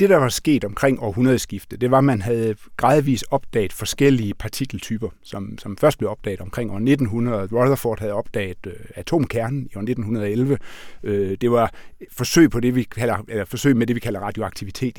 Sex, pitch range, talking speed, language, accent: male, 105-135 Hz, 170 wpm, Danish, native